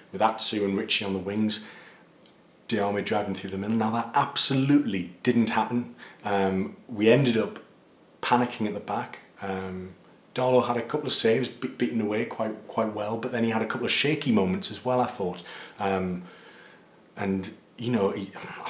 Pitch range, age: 100-115 Hz, 30-49